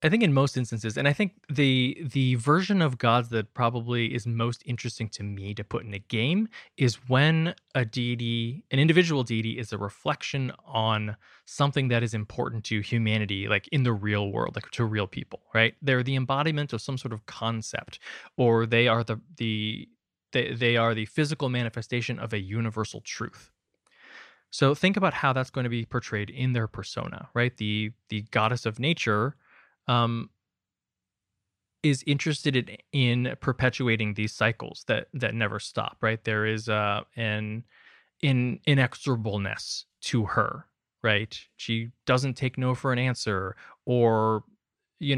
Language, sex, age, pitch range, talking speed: English, male, 20-39, 110-130 Hz, 165 wpm